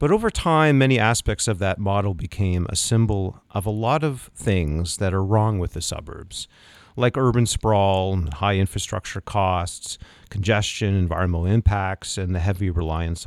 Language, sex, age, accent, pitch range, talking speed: English, male, 40-59, American, 90-110 Hz, 160 wpm